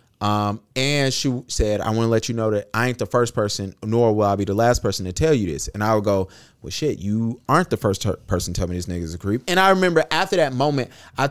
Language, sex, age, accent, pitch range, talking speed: English, male, 30-49, American, 100-130 Hz, 275 wpm